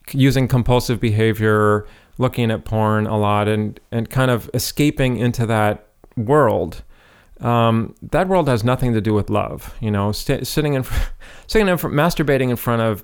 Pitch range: 110-140 Hz